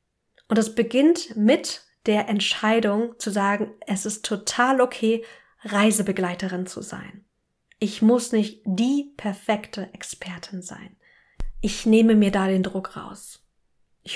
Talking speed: 125 wpm